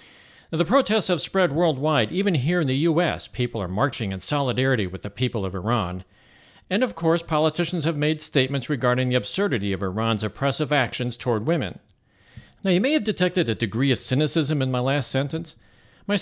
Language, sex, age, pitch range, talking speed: English, male, 50-69, 115-175 Hz, 190 wpm